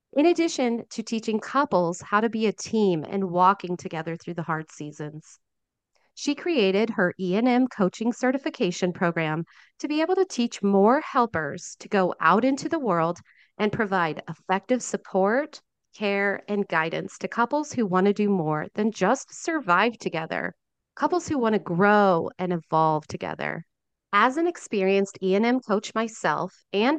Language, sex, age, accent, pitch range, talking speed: English, female, 40-59, American, 175-235 Hz, 155 wpm